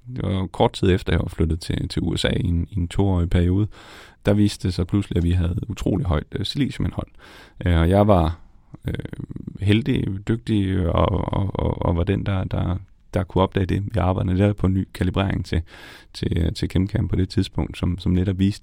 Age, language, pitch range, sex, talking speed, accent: 30-49, Danish, 85-100 Hz, male, 200 wpm, native